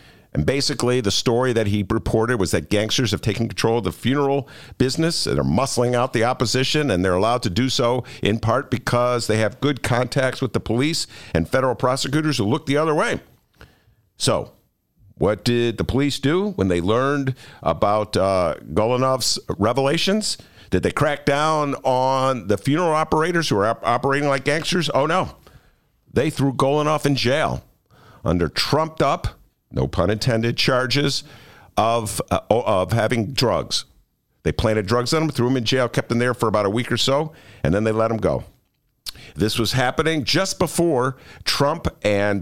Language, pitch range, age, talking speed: English, 110-140 Hz, 50-69, 175 wpm